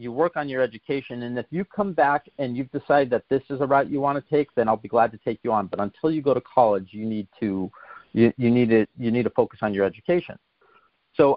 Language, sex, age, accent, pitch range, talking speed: English, male, 40-59, American, 110-145 Hz, 270 wpm